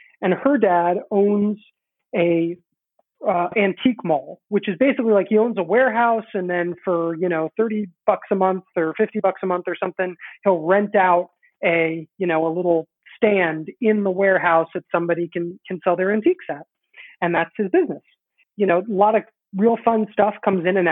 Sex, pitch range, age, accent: male, 175-215 Hz, 30-49, American